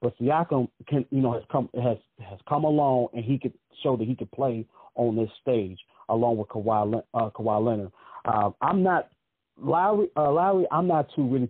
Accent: American